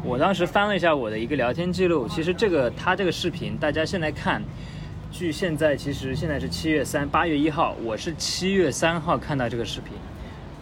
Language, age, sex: Chinese, 20-39, male